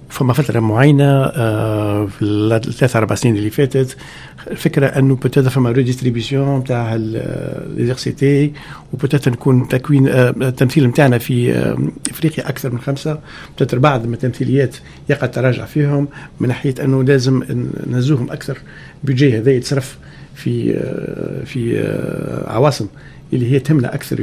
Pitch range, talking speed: 125-150 Hz, 130 wpm